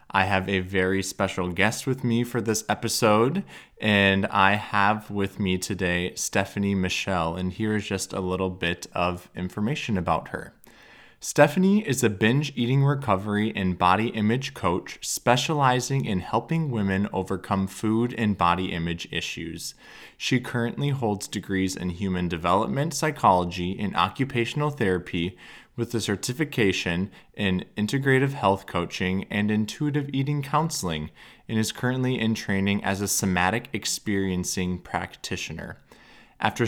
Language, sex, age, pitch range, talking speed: English, male, 20-39, 95-120 Hz, 135 wpm